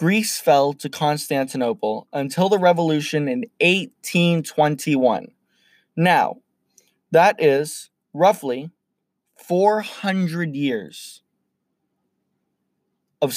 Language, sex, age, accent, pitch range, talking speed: English, male, 20-39, American, 145-185 Hz, 70 wpm